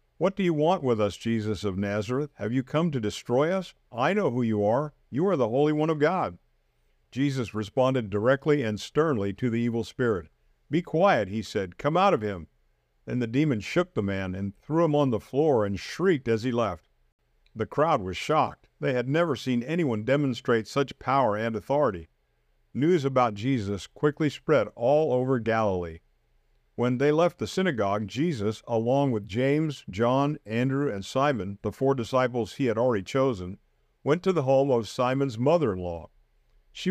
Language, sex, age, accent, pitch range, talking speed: English, male, 50-69, American, 105-140 Hz, 180 wpm